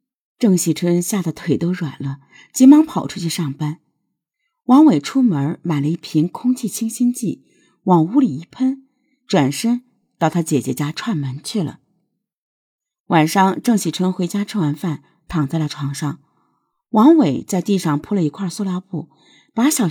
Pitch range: 150-240 Hz